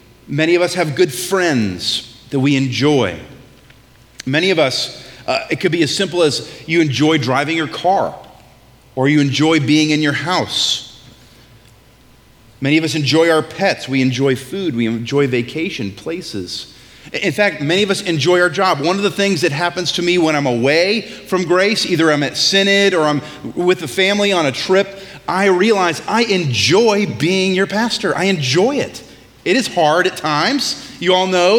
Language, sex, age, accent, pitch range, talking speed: English, male, 30-49, American, 130-195 Hz, 180 wpm